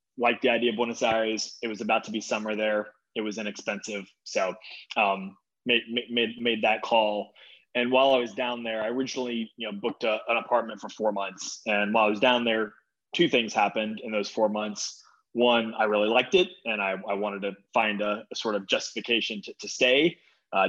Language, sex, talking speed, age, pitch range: English, male, 210 wpm, 20-39, 105-120 Hz